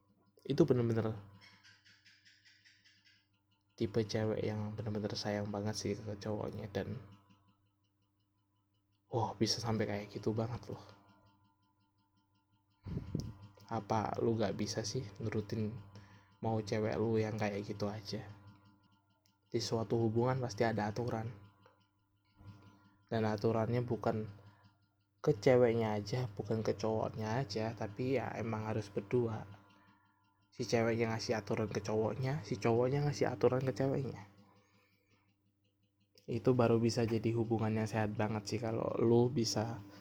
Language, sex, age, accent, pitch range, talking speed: Indonesian, male, 20-39, native, 100-110 Hz, 115 wpm